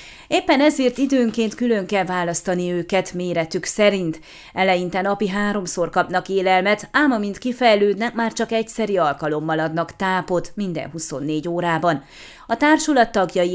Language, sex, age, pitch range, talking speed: Hungarian, female, 30-49, 170-220 Hz, 125 wpm